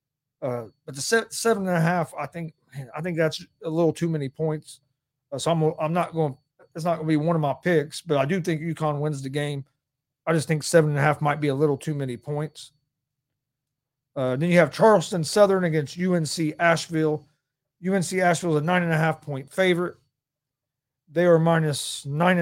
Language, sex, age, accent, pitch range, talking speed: English, male, 40-59, American, 140-165 Hz, 210 wpm